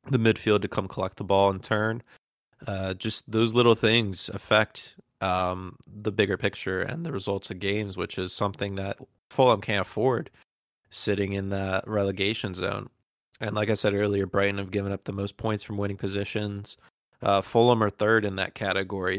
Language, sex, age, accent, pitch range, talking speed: English, male, 20-39, American, 100-110 Hz, 180 wpm